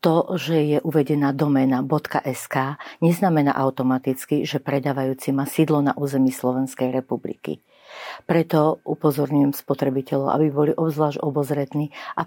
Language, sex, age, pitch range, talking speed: Slovak, female, 50-69, 130-150 Hz, 115 wpm